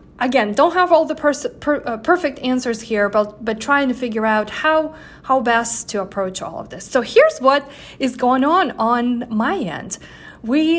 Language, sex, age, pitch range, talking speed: English, female, 30-49, 210-255 Hz, 195 wpm